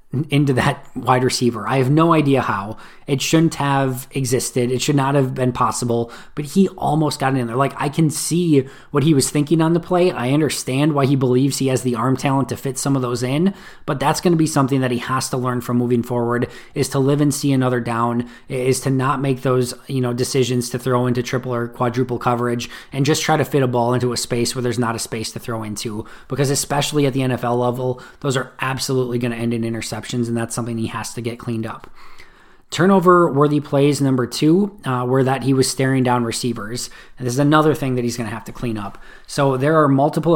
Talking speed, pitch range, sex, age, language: 240 wpm, 120-140 Hz, male, 20-39, English